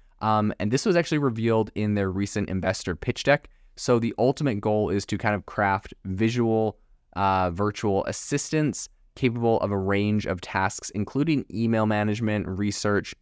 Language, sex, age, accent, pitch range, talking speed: English, male, 20-39, American, 95-115 Hz, 160 wpm